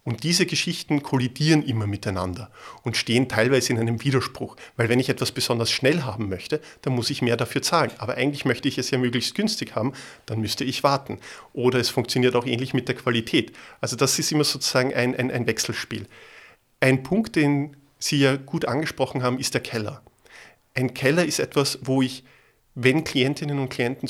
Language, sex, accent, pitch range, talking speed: German, male, German, 125-145 Hz, 190 wpm